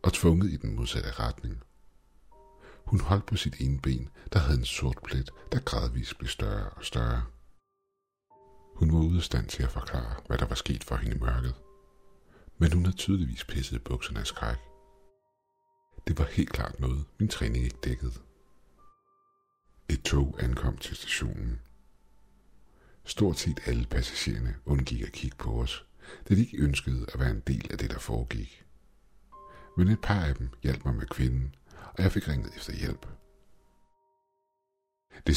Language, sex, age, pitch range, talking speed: Danish, male, 60-79, 65-90 Hz, 165 wpm